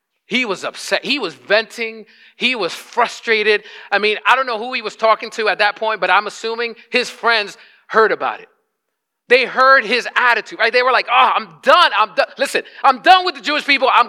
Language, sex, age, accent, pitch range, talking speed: English, male, 40-59, American, 175-245 Hz, 215 wpm